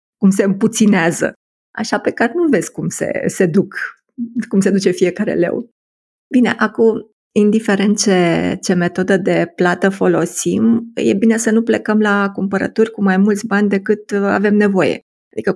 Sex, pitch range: female, 185-225 Hz